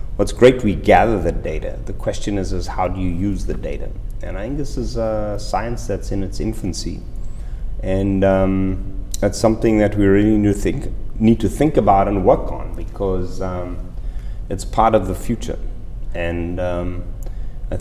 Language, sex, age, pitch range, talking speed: English, male, 30-49, 90-105 Hz, 170 wpm